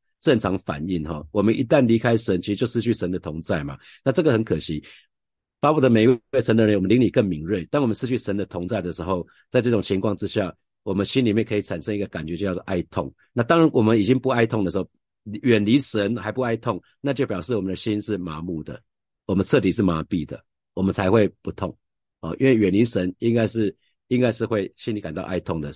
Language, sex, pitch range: Chinese, male, 90-115 Hz